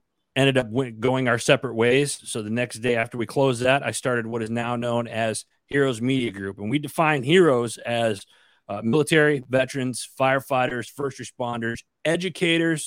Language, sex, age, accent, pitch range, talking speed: English, male, 30-49, American, 115-145 Hz, 170 wpm